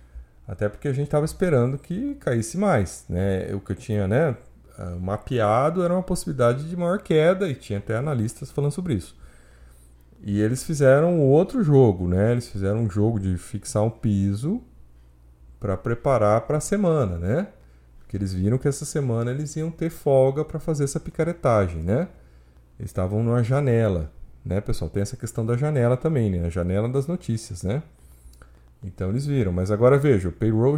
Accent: Brazilian